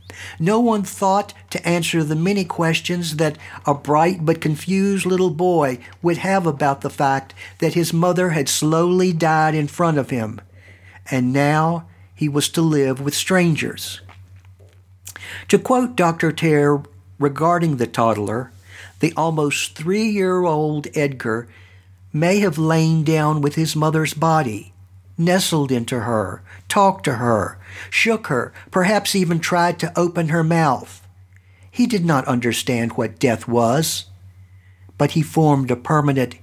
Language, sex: English, male